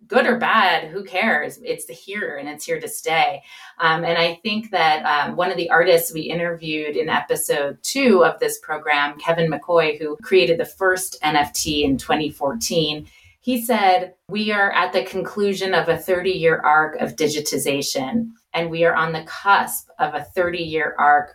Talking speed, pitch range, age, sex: 175 wpm, 165-230 Hz, 30-49, female